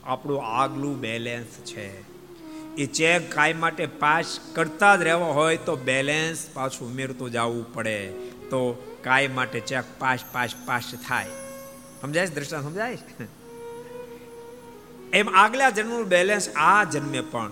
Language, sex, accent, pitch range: Gujarati, male, native, 115-175 Hz